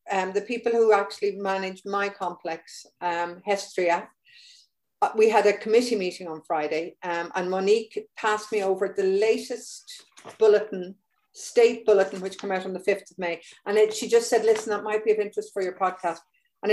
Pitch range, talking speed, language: 185-225 Hz, 180 wpm, English